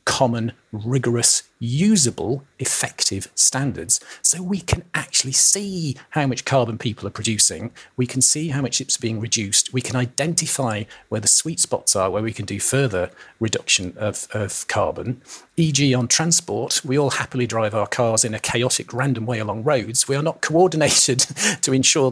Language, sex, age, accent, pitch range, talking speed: English, male, 40-59, British, 110-140 Hz, 170 wpm